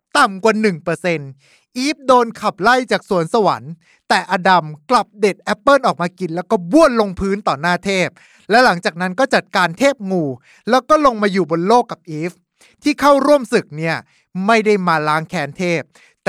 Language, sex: Thai, male